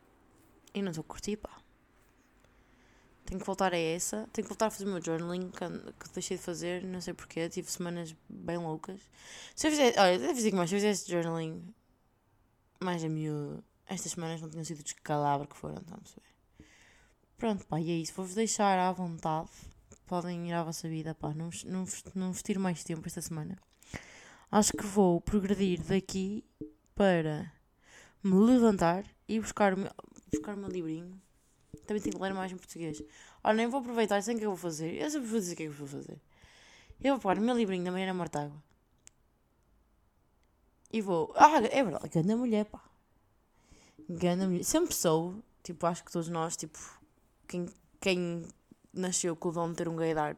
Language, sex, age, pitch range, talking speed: Portuguese, female, 20-39, 160-195 Hz, 195 wpm